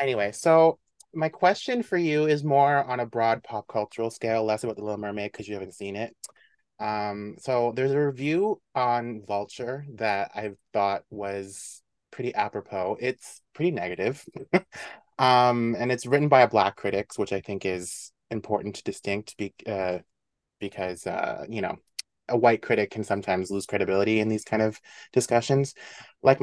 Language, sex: English, male